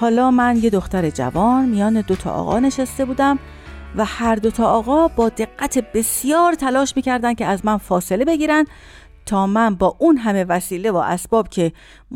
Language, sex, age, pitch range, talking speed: Persian, female, 50-69, 190-285 Hz, 175 wpm